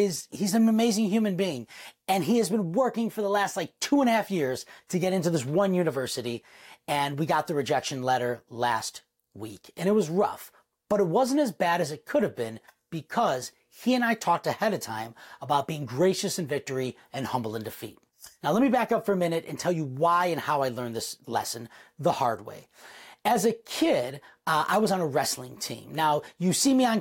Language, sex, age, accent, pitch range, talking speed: English, male, 30-49, American, 155-215 Hz, 220 wpm